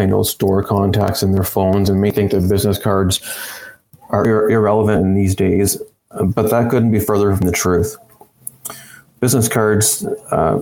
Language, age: English, 30-49